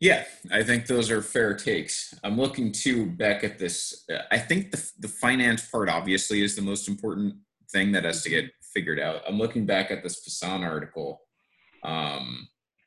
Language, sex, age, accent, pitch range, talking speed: English, male, 30-49, American, 90-105 Hz, 180 wpm